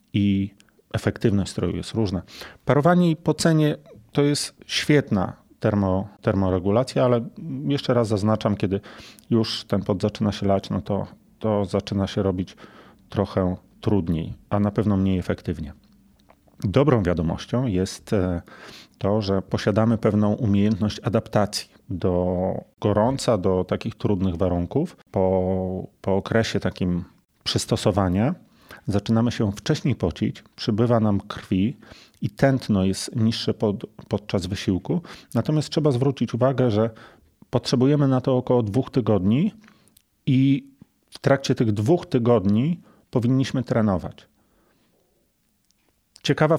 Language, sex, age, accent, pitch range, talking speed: Polish, male, 30-49, native, 100-130 Hz, 115 wpm